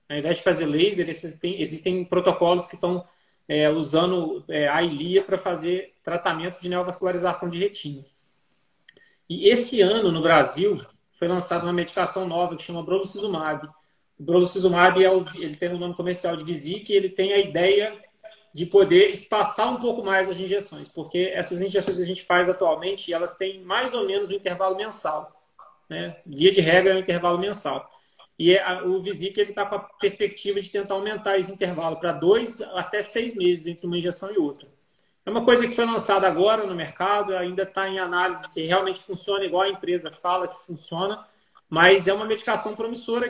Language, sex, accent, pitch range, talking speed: Portuguese, male, Brazilian, 175-205 Hz, 185 wpm